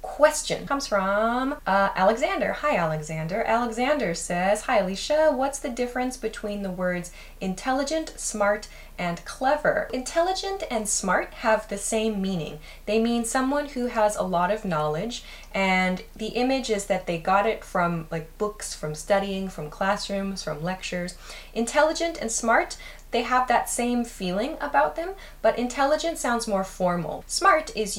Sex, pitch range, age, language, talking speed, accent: female, 180-255 Hz, 10-29, English, 150 wpm, American